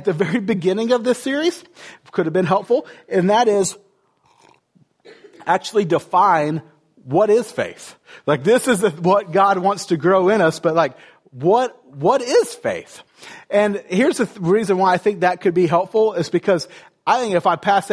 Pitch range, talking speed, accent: 155-205 Hz, 180 wpm, American